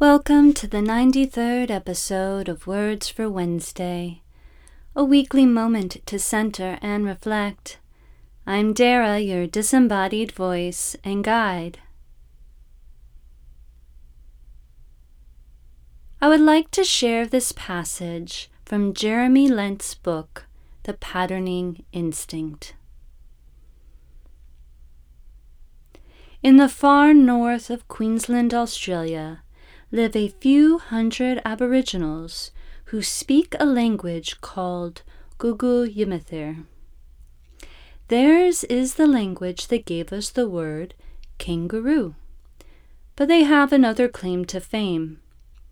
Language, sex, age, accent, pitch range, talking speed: English, female, 30-49, American, 145-240 Hz, 95 wpm